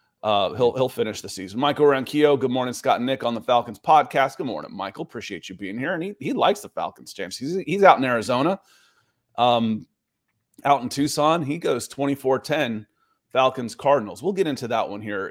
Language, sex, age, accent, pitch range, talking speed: English, male, 30-49, American, 115-140 Hz, 200 wpm